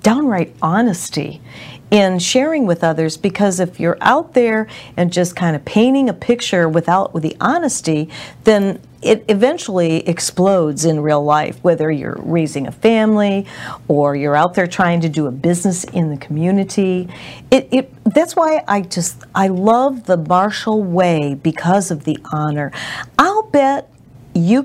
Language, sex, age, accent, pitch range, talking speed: English, female, 40-59, American, 165-220 Hz, 155 wpm